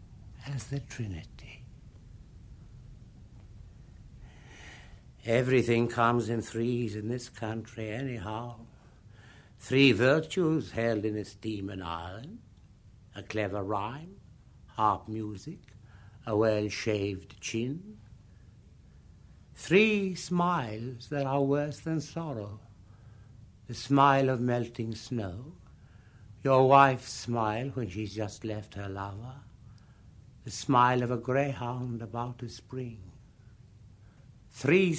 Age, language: 60-79, English